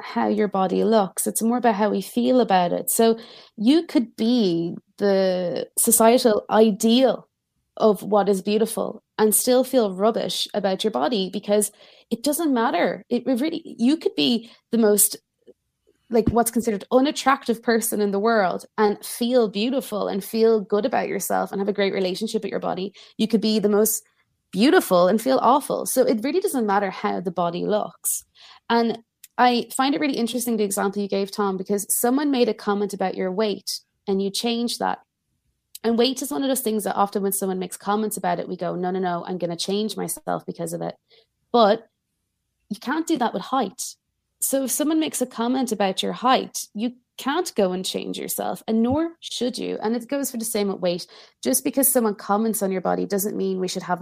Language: English